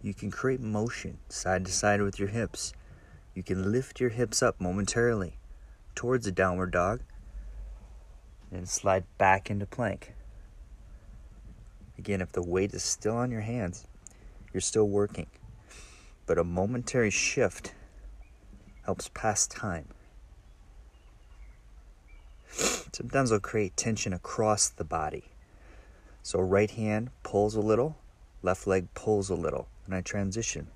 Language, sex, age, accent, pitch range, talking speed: English, male, 30-49, American, 75-105 Hz, 130 wpm